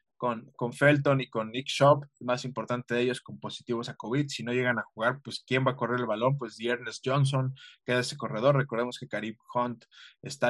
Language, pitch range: Spanish, 120-140 Hz